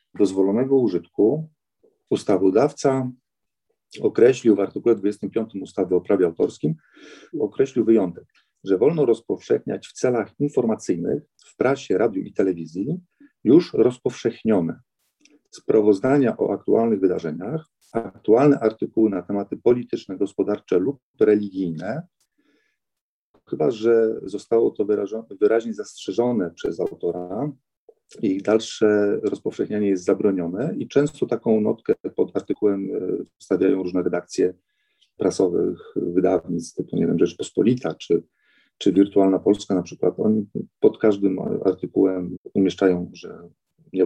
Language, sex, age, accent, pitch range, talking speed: Polish, male, 40-59, native, 95-130 Hz, 105 wpm